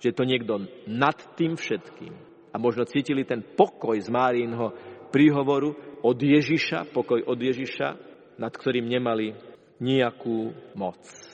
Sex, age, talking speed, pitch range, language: male, 50-69, 125 wpm, 125-165 Hz, Slovak